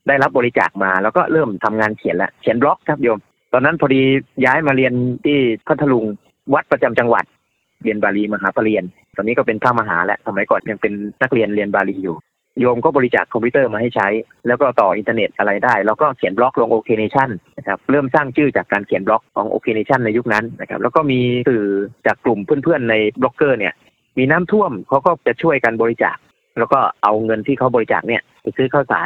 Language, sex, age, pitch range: Thai, male, 30-49, 105-140 Hz